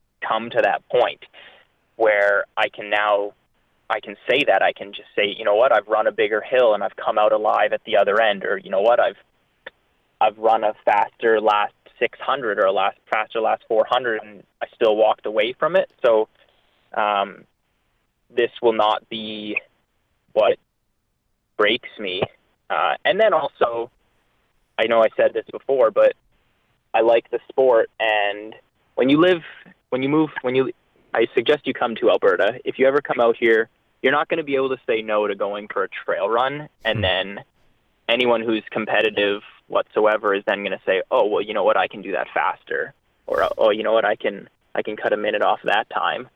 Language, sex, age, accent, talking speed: English, male, 20-39, American, 200 wpm